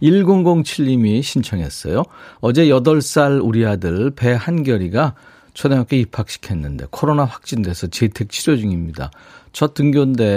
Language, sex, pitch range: Korean, male, 95-140 Hz